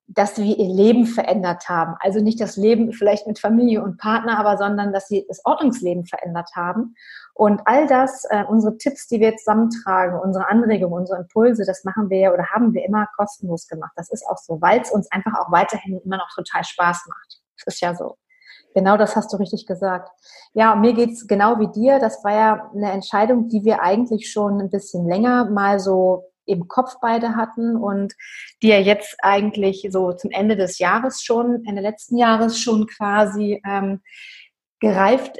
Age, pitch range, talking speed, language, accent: 30-49, 195-225 Hz, 195 wpm, German, German